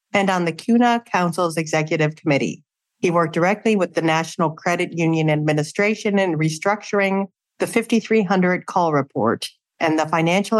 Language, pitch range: English, 155-195 Hz